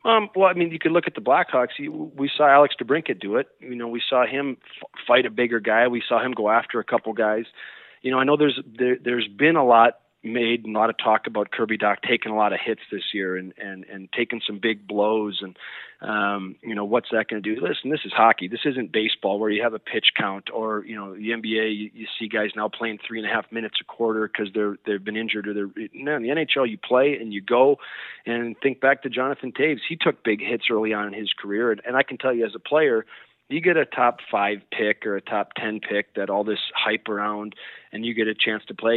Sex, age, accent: male, 40-59, American